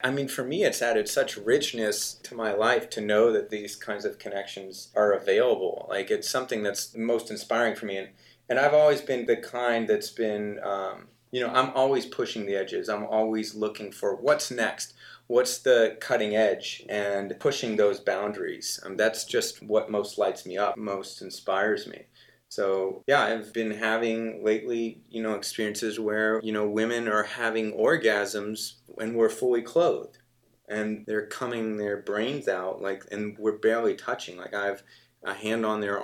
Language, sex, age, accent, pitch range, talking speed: English, male, 30-49, American, 100-120 Hz, 180 wpm